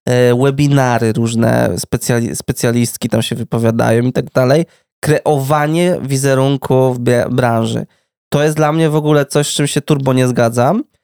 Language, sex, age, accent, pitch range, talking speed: Polish, male, 20-39, native, 120-150 Hz, 140 wpm